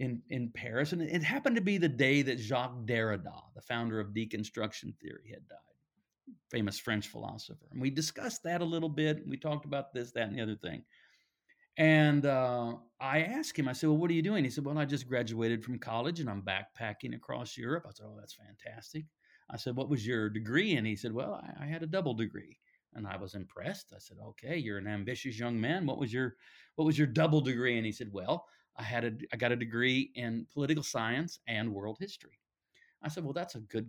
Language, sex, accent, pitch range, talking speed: English, male, American, 115-155 Hz, 225 wpm